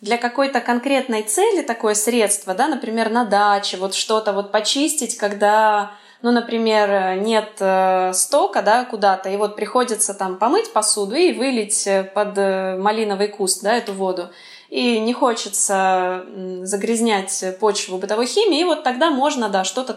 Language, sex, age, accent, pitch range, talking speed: Russian, female, 20-39, native, 200-240 Hz, 145 wpm